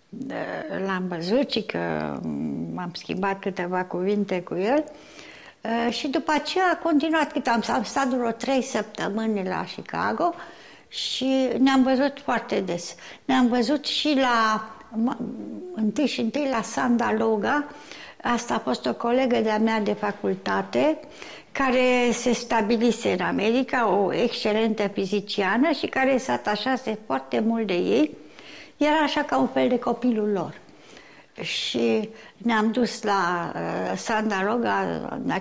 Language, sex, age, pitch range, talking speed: Romanian, female, 60-79, 200-255 Hz, 135 wpm